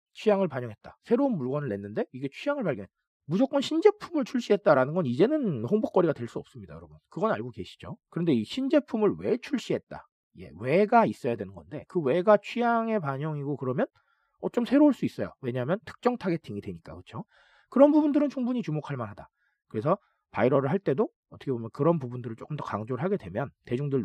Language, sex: Korean, male